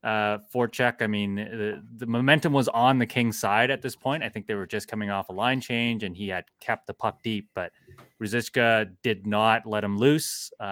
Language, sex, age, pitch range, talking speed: English, male, 20-39, 95-120 Hz, 225 wpm